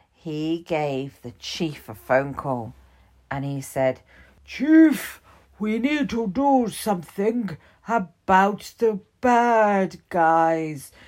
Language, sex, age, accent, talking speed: English, female, 50-69, British, 110 wpm